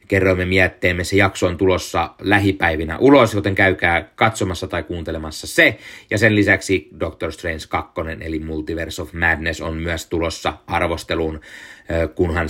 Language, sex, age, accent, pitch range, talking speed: Finnish, male, 30-49, native, 90-110 Hz, 140 wpm